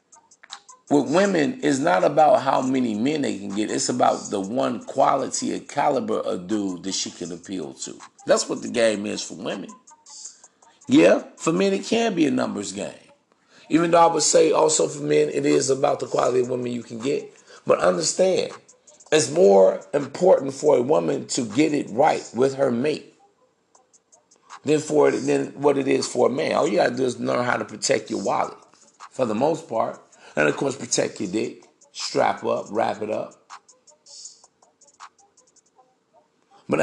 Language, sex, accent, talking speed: English, male, American, 180 wpm